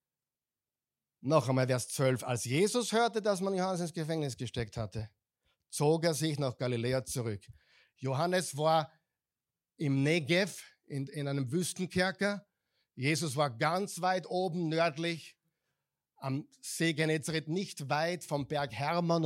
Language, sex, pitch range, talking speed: German, male, 135-185 Hz, 130 wpm